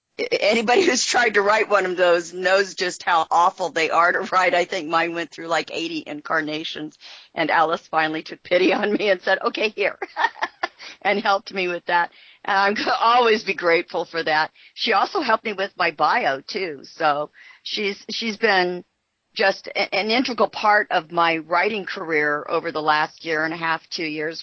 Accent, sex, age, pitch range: American, female, 50-69, 170-230 Hz